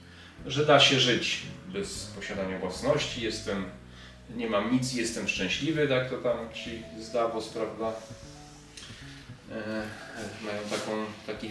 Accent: native